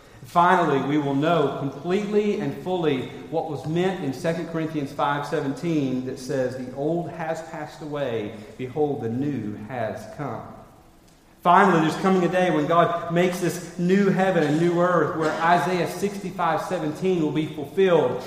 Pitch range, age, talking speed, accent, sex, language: 150-195 Hz, 40-59, 150 wpm, American, male, English